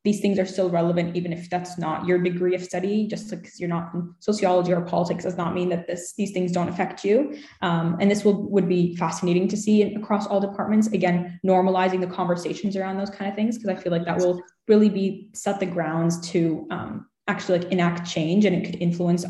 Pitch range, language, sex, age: 170-195 Hz, English, female, 10-29